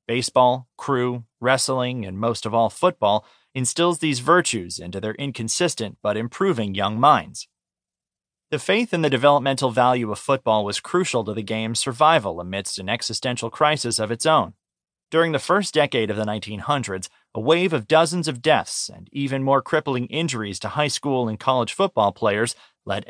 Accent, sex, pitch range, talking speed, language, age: American, male, 110-150 Hz, 170 wpm, English, 30-49